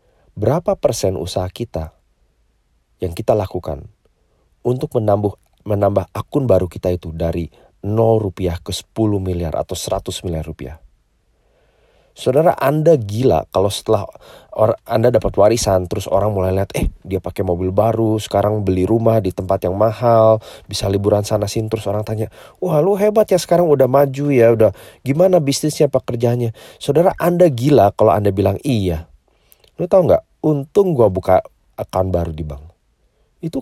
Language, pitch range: English, 90-115 Hz